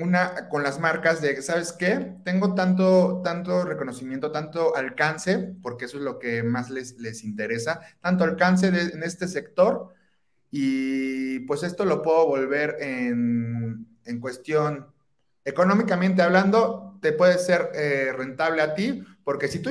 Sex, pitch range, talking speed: male, 135-175 Hz, 150 wpm